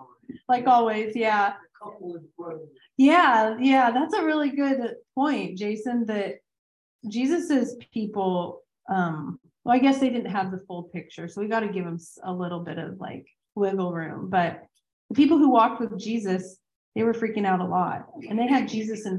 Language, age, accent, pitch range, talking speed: English, 30-49, American, 180-230 Hz, 170 wpm